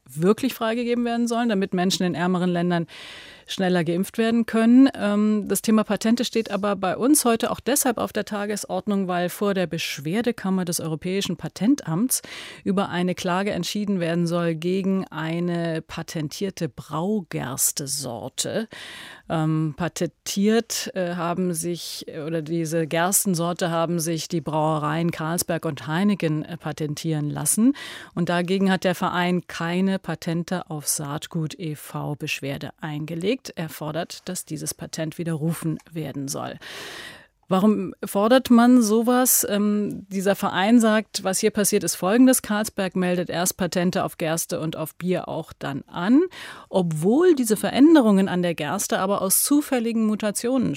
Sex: female